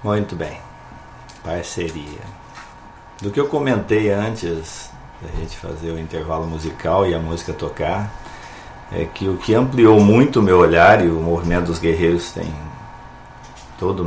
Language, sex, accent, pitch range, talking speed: Portuguese, male, Brazilian, 80-105 Hz, 145 wpm